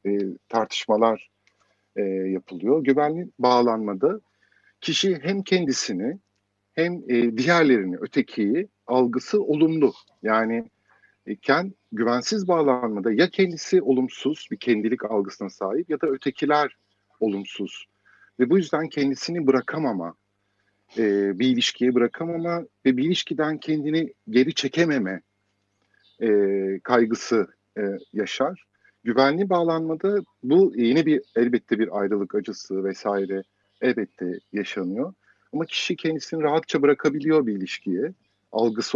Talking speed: 105 wpm